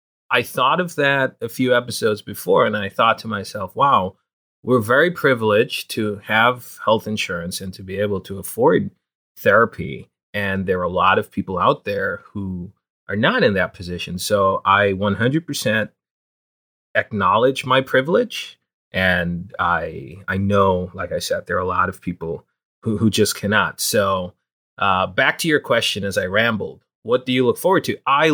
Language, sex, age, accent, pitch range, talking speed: English, male, 30-49, American, 100-120 Hz, 175 wpm